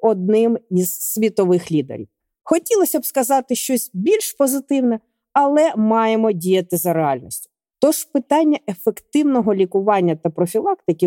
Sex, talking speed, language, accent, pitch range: female, 115 wpm, Ukrainian, native, 180-255 Hz